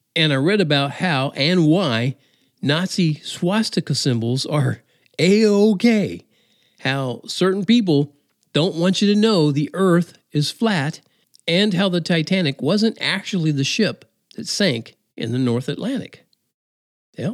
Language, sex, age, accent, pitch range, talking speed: English, male, 50-69, American, 130-195 Hz, 135 wpm